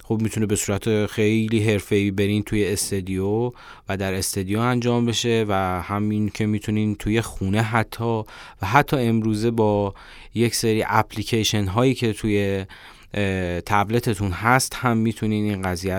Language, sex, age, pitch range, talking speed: Persian, male, 30-49, 100-120 Hz, 140 wpm